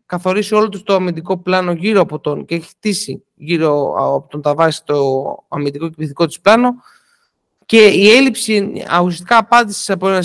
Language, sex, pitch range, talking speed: Greek, male, 175-225 Hz, 170 wpm